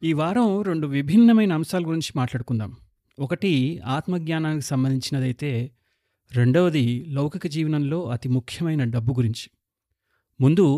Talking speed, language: 105 wpm, Telugu